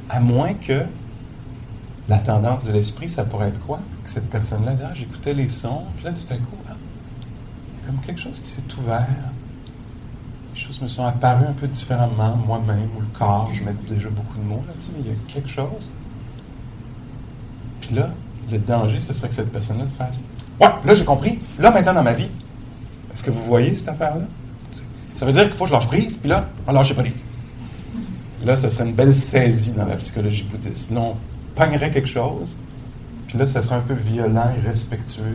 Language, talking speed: English, 200 wpm